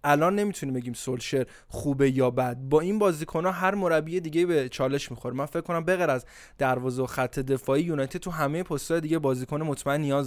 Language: Persian